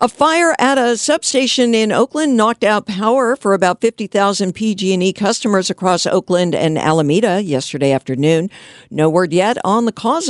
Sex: female